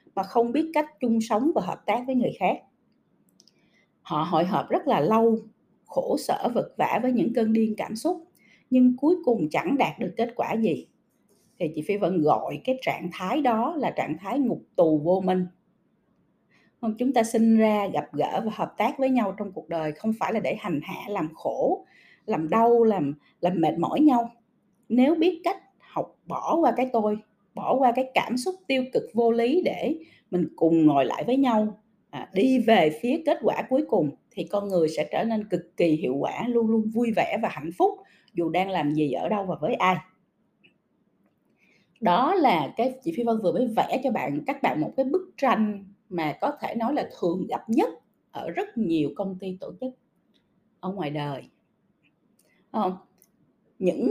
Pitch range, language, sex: 185-250 Hz, Vietnamese, female